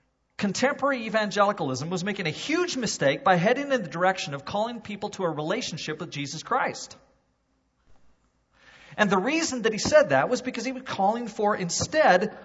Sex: male